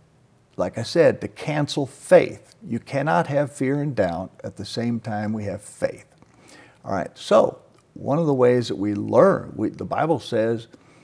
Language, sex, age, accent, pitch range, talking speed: English, male, 50-69, American, 115-145 Hz, 175 wpm